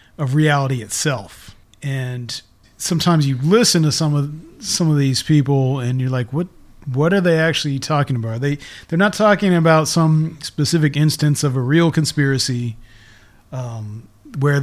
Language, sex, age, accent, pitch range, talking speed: English, male, 30-49, American, 125-150 Hz, 160 wpm